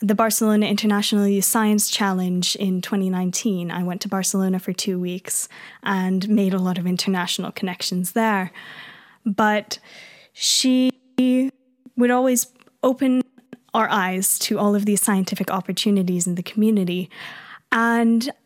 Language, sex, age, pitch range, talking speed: English, female, 10-29, 195-250 Hz, 130 wpm